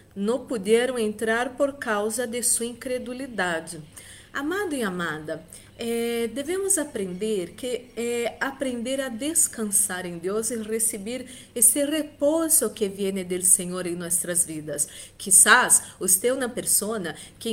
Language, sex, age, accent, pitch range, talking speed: Spanish, female, 40-59, Brazilian, 220-280 Hz, 130 wpm